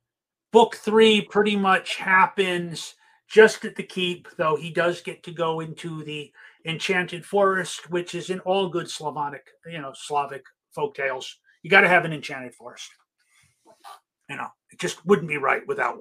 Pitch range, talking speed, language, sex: 155-225 Hz, 170 wpm, English, male